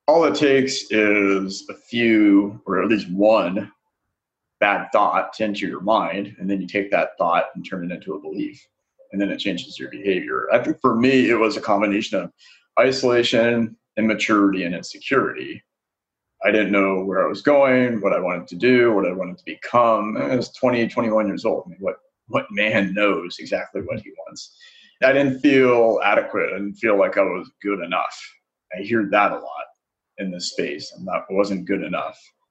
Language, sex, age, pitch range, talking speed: English, male, 30-49, 100-140 Hz, 190 wpm